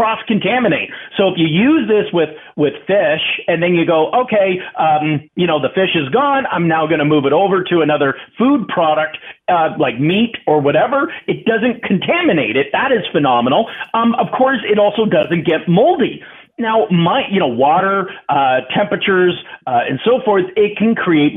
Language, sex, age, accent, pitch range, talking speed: English, male, 40-59, American, 165-245 Hz, 185 wpm